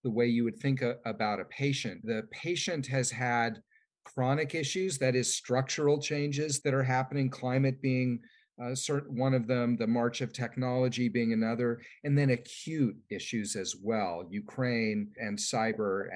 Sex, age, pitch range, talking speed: male, 40-59, 110-140 Hz, 160 wpm